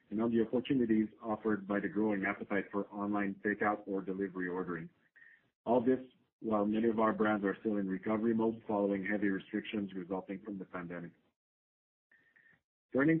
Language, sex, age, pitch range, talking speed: English, male, 50-69, 100-110 Hz, 160 wpm